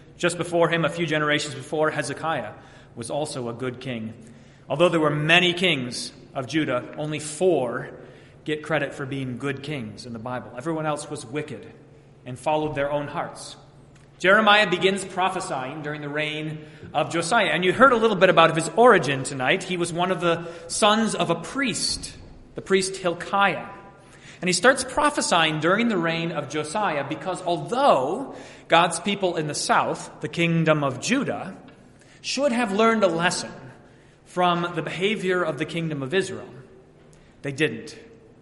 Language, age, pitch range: English, 30-49, 145-185 Hz